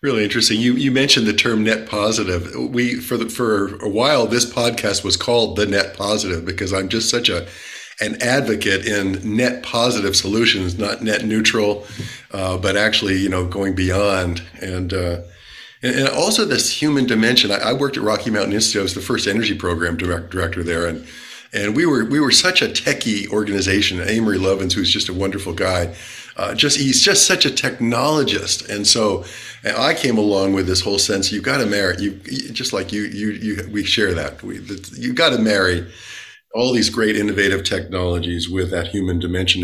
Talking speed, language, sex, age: 195 wpm, English, male, 50-69